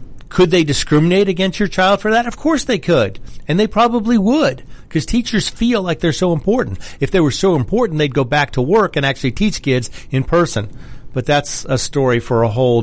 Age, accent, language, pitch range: 50-69, American, English, 115-150 Hz